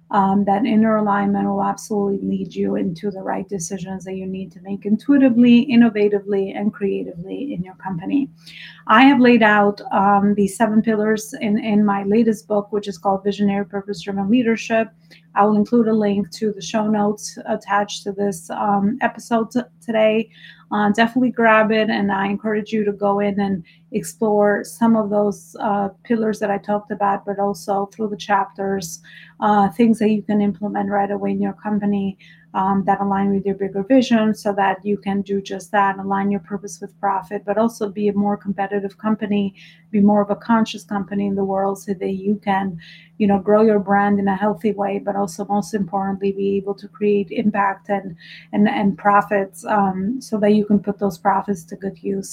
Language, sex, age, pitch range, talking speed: English, female, 30-49, 195-215 Hz, 195 wpm